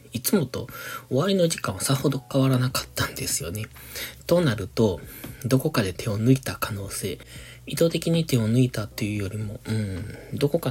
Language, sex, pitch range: Japanese, male, 110-140 Hz